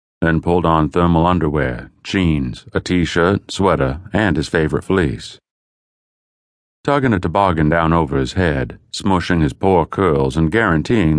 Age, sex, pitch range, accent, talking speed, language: 40-59, male, 75-100 Hz, American, 140 wpm, English